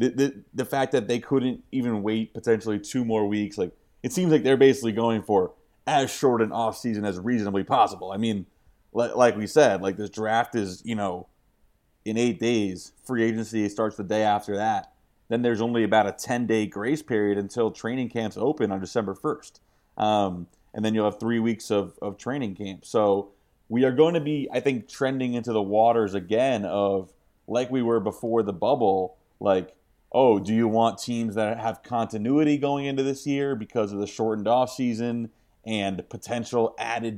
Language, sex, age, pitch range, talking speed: English, male, 30-49, 100-120 Hz, 195 wpm